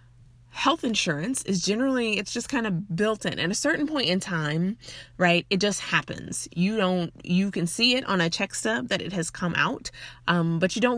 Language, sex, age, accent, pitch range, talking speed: English, female, 20-39, American, 155-200 Hz, 215 wpm